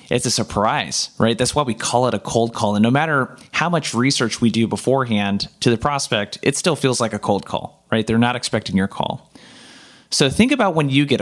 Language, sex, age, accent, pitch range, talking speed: English, male, 20-39, American, 105-140 Hz, 230 wpm